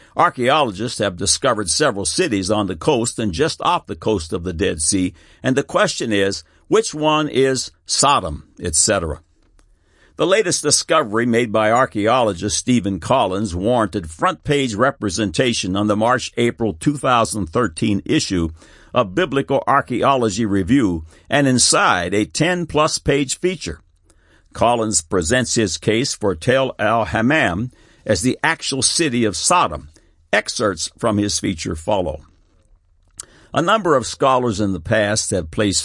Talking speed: 130 wpm